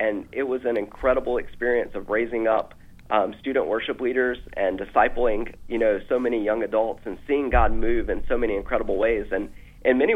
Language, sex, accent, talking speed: English, male, American, 195 wpm